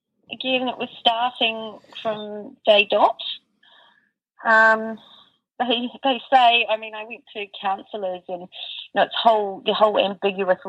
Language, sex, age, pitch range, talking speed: English, female, 30-49, 200-255 Hz, 140 wpm